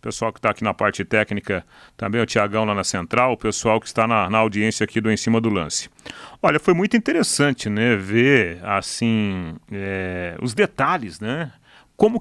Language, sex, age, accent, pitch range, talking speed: Portuguese, male, 40-59, Brazilian, 110-145 Hz, 190 wpm